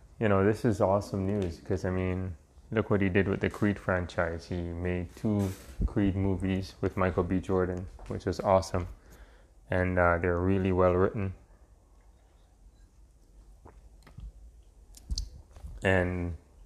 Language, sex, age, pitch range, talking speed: English, male, 20-39, 90-100 Hz, 130 wpm